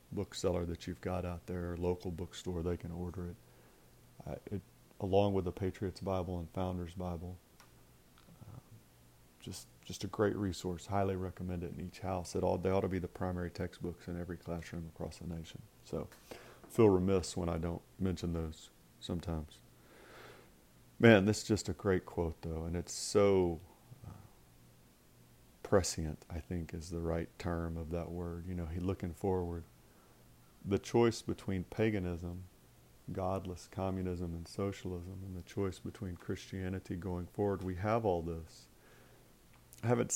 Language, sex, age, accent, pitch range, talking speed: English, male, 40-59, American, 85-100 Hz, 160 wpm